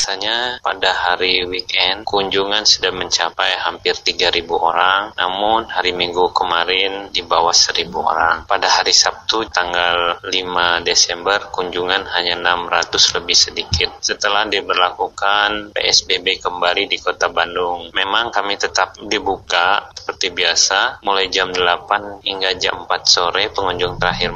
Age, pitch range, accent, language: 30-49, 125-190 Hz, native, Indonesian